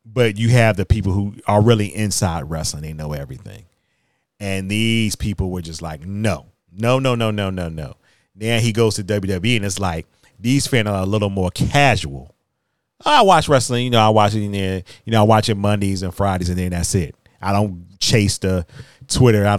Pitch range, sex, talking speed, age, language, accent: 95-120 Hz, male, 205 wpm, 40-59, English, American